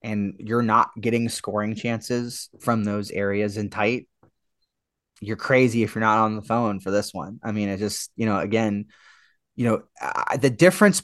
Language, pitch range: English, 110-140 Hz